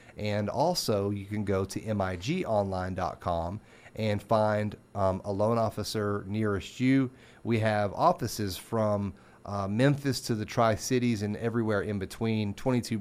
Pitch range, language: 100-115 Hz, English